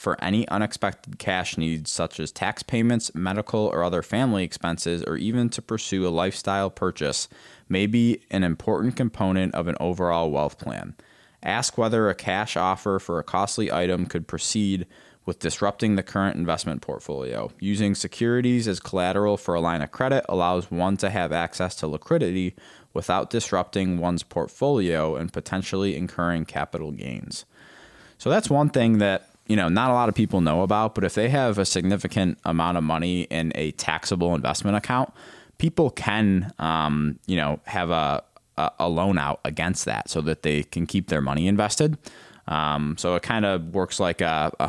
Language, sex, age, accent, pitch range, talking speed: English, male, 20-39, American, 85-105 Hz, 175 wpm